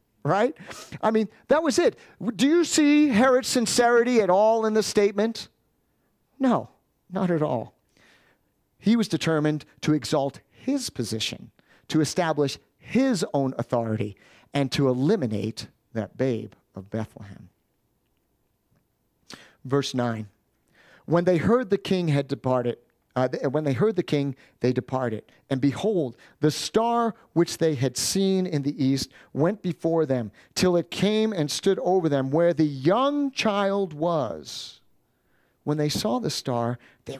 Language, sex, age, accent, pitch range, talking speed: English, male, 50-69, American, 125-205 Hz, 140 wpm